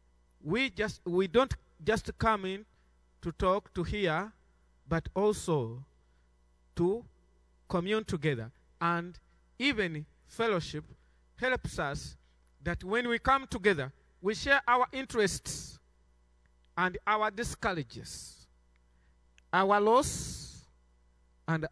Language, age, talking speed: English, 50-69, 100 wpm